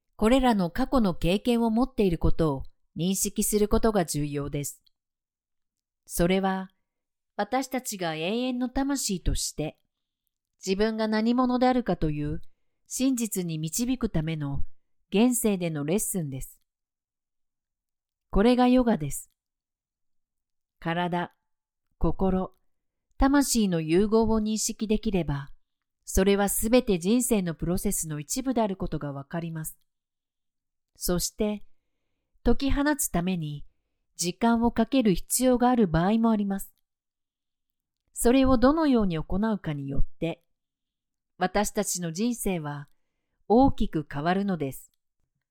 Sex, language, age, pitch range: female, Japanese, 40-59, 165-235 Hz